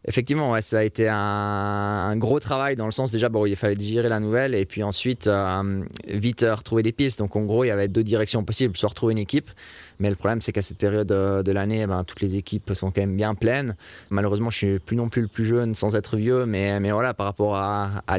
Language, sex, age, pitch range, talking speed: French, male, 20-39, 100-120 Hz, 260 wpm